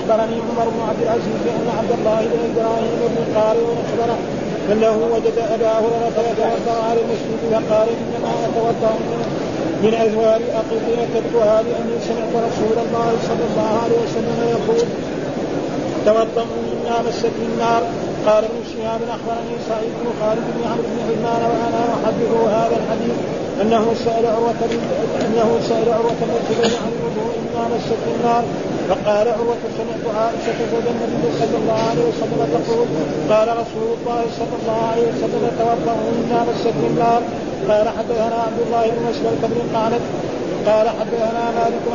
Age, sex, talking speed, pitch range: 40-59, male, 140 wpm, 225-235 Hz